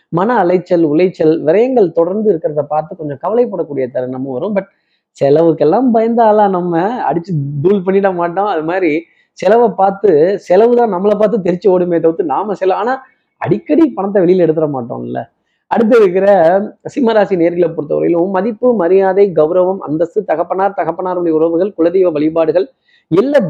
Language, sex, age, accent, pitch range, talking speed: Tamil, male, 20-39, native, 150-200 Hz, 135 wpm